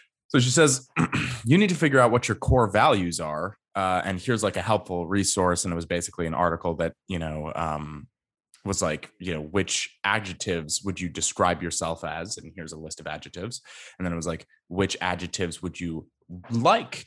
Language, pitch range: English, 85-115 Hz